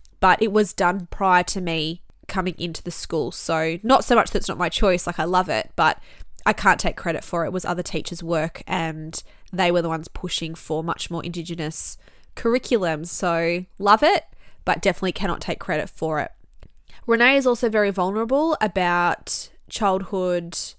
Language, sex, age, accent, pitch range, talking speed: English, female, 20-39, Australian, 175-210 Hz, 185 wpm